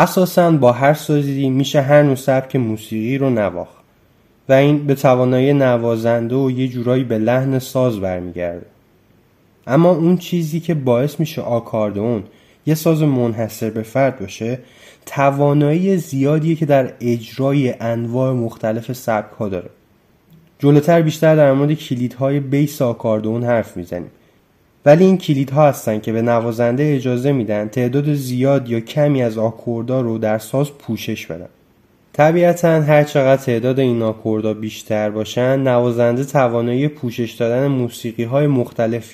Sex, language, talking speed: male, Persian, 140 wpm